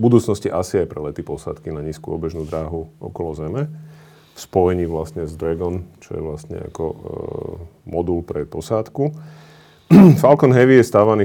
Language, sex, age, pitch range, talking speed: Slovak, male, 40-59, 80-105 Hz, 160 wpm